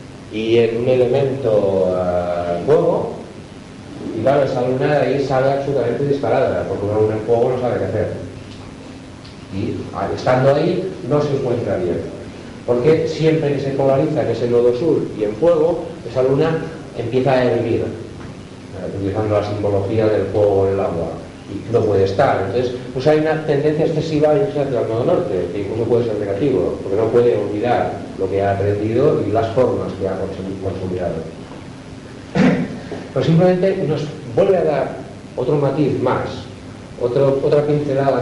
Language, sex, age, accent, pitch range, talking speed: Spanish, male, 40-59, Spanish, 105-145 Hz, 160 wpm